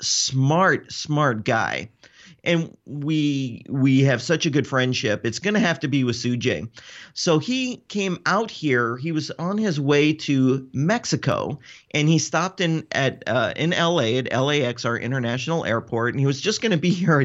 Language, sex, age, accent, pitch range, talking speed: English, male, 40-59, American, 130-165 Hz, 180 wpm